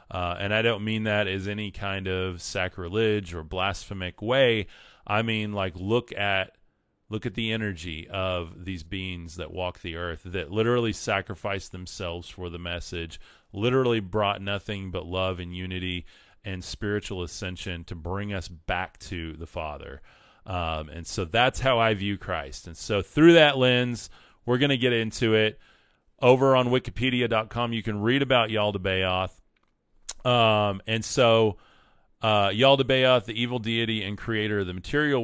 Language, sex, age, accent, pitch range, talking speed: English, male, 30-49, American, 90-115 Hz, 160 wpm